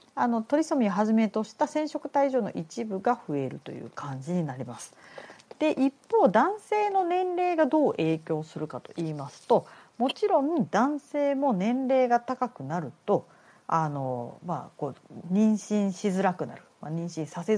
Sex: female